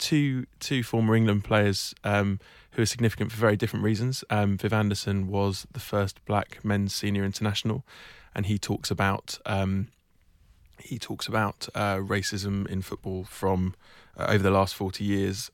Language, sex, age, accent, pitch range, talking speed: English, male, 20-39, British, 100-110 Hz, 160 wpm